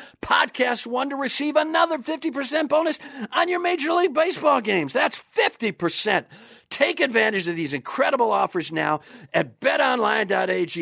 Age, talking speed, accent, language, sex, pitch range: 50-69, 135 wpm, American, English, male, 155-235 Hz